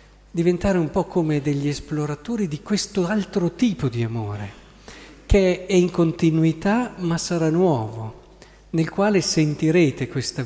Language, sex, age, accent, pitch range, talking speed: Italian, male, 50-69, native, 115-155 Hz, 130 wpm